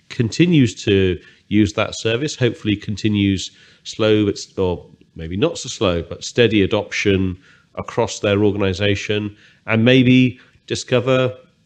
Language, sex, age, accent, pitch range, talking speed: English, male, 40-59, British, 95-120 Hz, 120 wpm